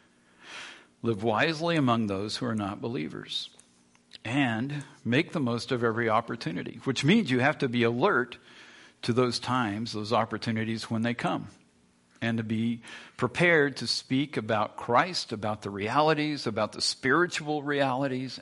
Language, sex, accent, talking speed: English, male, American, 145 wpm